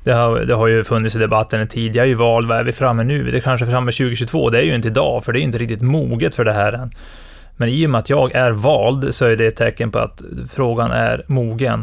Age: 20-39